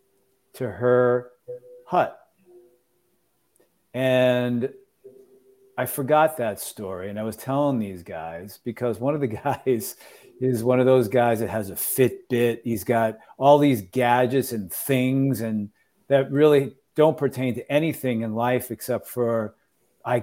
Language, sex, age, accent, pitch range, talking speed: English, male, 50-69, American, 115-140 Hz, 140 wpm